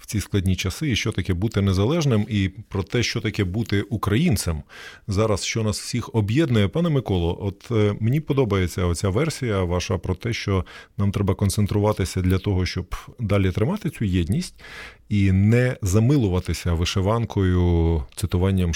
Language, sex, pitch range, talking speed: Ukrainian, male, 90-115 Hz, 150 wpm